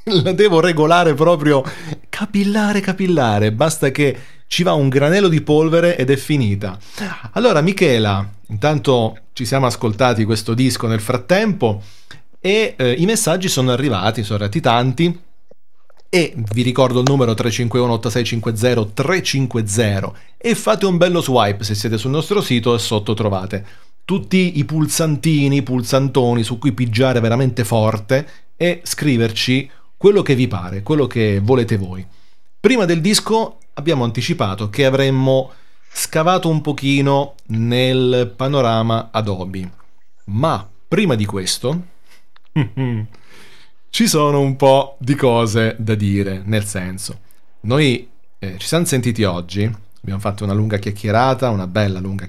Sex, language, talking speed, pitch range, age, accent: male, Italian, 135 wpm, 110-150 Hz, 30-49, native